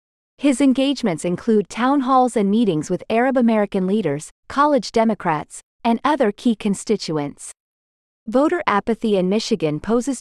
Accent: American